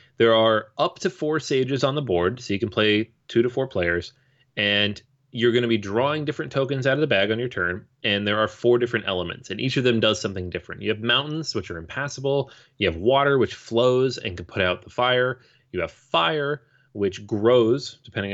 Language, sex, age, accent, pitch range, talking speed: English, male, 30-49, American, 100-130 Hz, 225 wpm